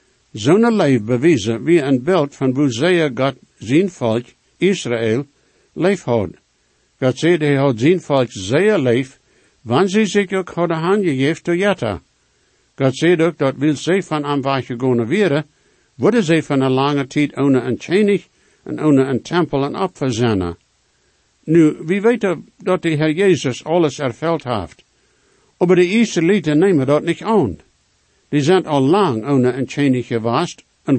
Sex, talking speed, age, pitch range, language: male, 165 wpm, 60-79, 125-175 Hz, English